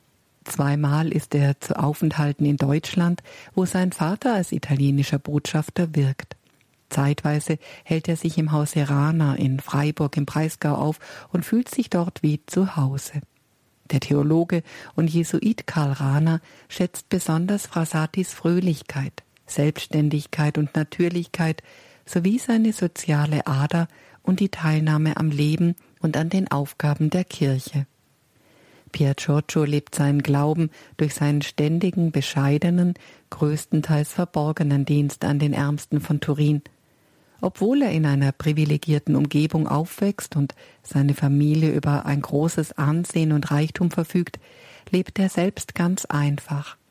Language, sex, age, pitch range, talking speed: Italian, female, 50-69, 145-170 Hz, 130 wpm